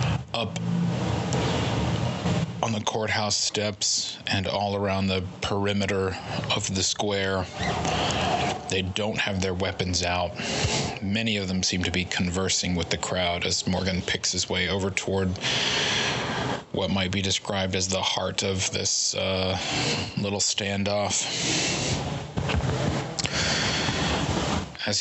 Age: 30-49